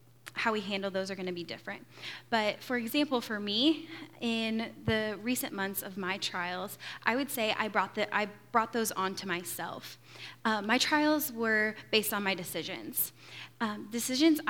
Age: 10-29